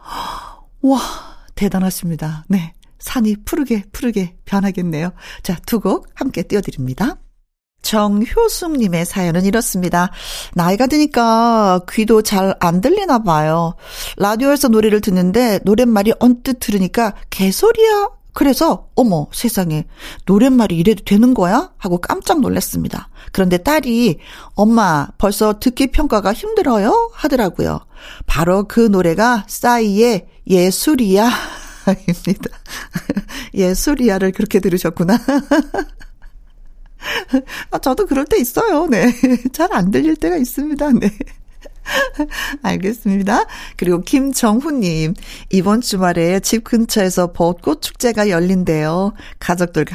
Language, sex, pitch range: Korean, female, 180-250 Hz